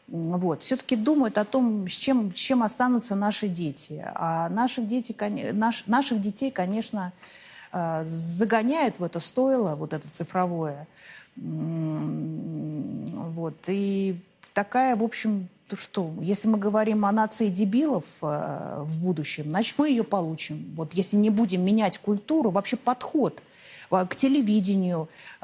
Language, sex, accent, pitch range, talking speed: Russian, female, native, 170-230 Hz, 130 wpm